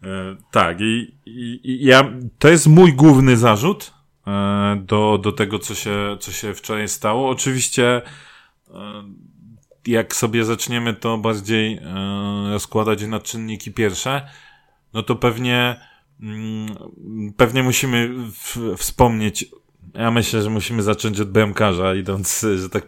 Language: Polish